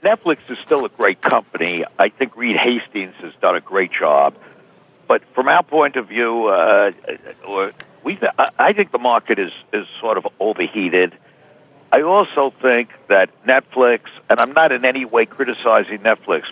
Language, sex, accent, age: Korean, male, American, 60-79